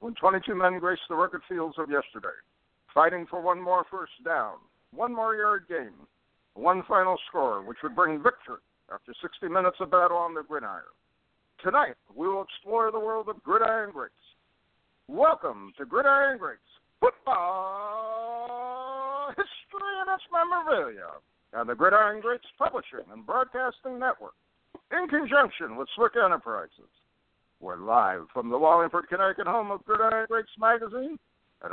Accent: American